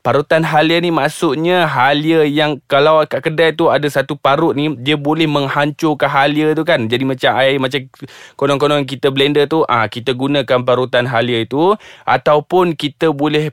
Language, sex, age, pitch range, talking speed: Malay, male, 20-39, 140-180 Hz, 170 wpm